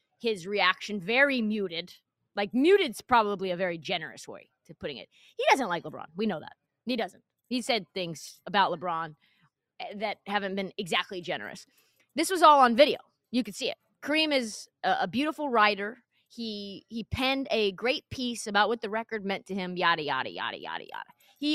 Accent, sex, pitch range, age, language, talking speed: American, female, 190-255 Hz, 20-39, English, 185 wpm